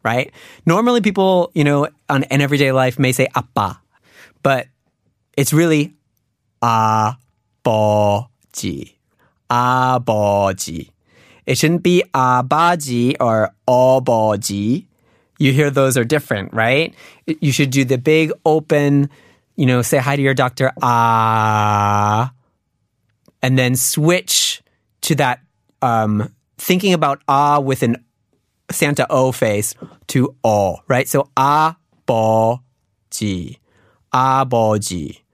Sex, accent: male, American